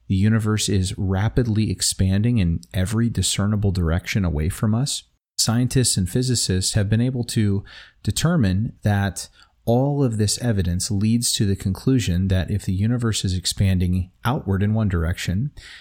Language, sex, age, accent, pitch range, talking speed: English, male, 30-49, American, 95-115 Hz, 150 wpm